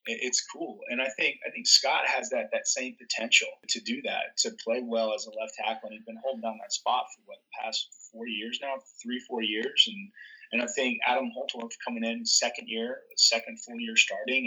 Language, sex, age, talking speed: English, male, 30-49, 225 wpm